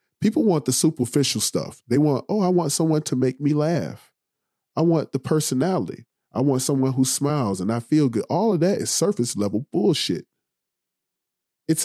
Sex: male